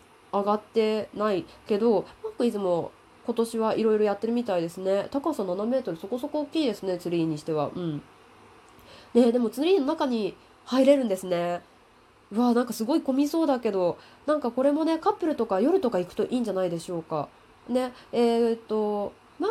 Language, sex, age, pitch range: Japanese, female, 20-39, 185-270 Hz